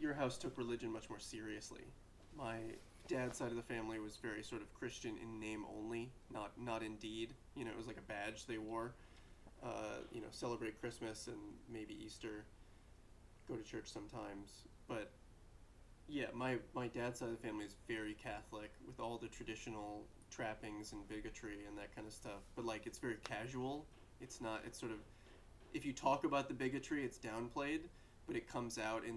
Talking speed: 190 wpm